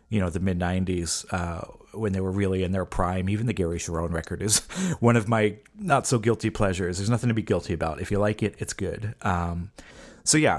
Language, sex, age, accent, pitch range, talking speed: English, male, 30-49, American, 90-115 Hz, 230 wpm